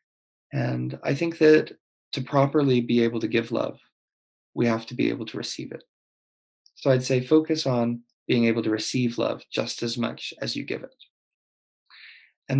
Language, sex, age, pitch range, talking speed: Hindi, male, 20-39, 115-135 Hz, 175 wpm